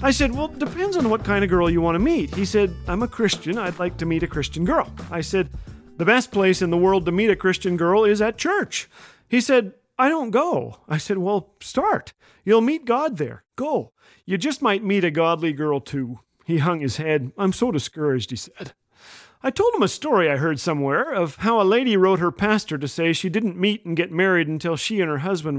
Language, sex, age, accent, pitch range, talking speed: English, male, 40-59, American, 165-235 Hz, 235 wpm